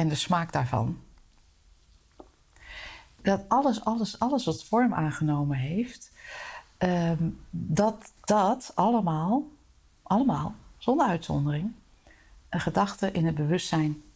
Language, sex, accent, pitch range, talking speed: Dutch, female, Dutch, 160-205 Hz, 100 wpm